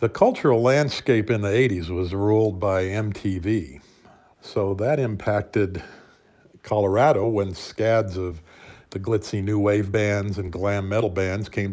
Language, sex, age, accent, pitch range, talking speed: English, male, 50-69, American, 95-110 Hz, 140 wpm